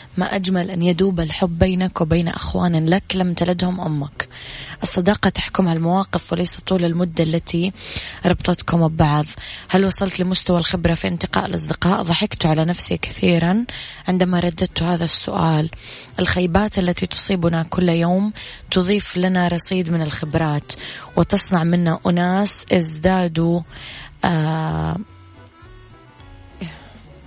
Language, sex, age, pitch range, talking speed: Arabic, female, 20-39, 160-185 Hz, 110 wpm